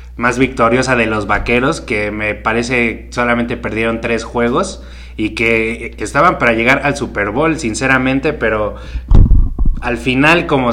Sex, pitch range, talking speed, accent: male, 115-145 Hz, 140 wpm, Mexican